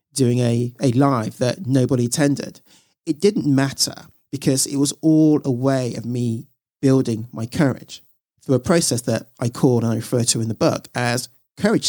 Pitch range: 125-150 Hz